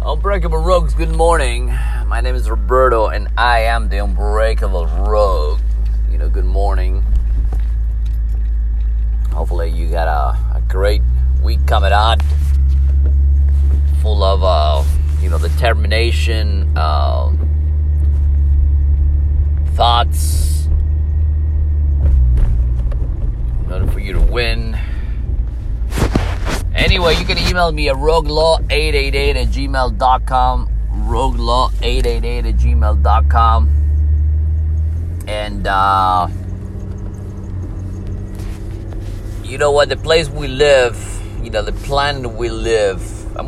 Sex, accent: male, American